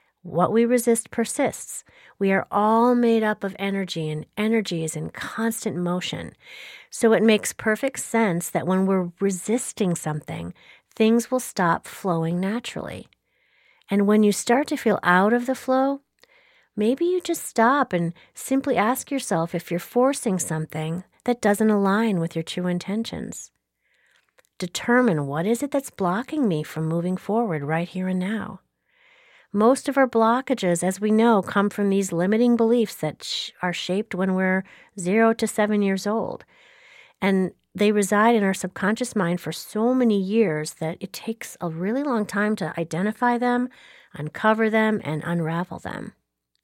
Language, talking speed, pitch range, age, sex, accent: English, 160 wpm, 175-235 Hz, 40-59, female, American